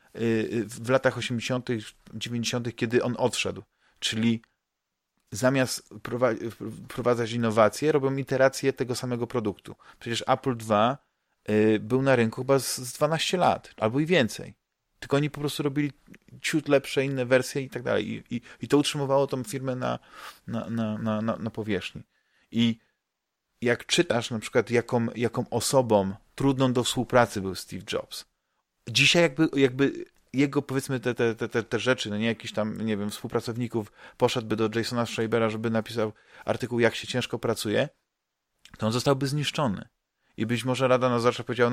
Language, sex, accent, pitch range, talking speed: Polish, male, native, 110-130 Hz, 155 wpm